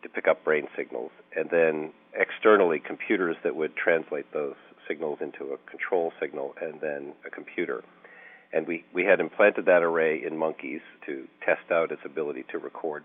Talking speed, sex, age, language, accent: 175 wpm, male, 50-69, English, American